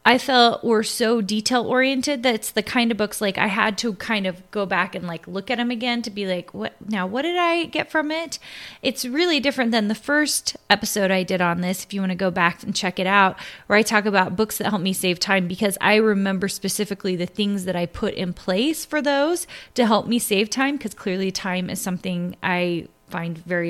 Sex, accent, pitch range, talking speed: female, American, 190-245 Hz, 235 wpm